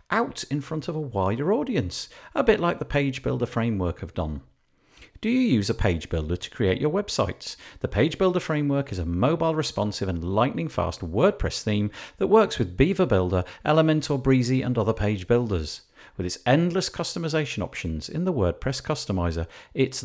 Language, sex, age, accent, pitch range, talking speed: English, male, 50-69, British, 90-150 Hz, 180 wpm